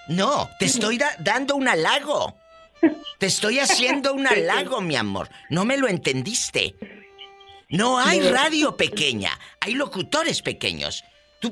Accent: Spanish